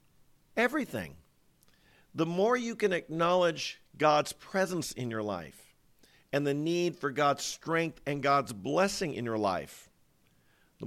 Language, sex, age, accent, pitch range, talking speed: English, male, 50-69, American, 110-150 Hz, 135 wpm